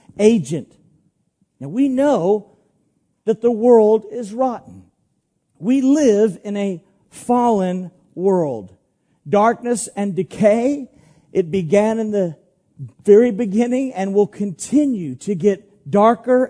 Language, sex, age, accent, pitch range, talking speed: English, male, 50-69, American, 175-230 Hz, 110 wpm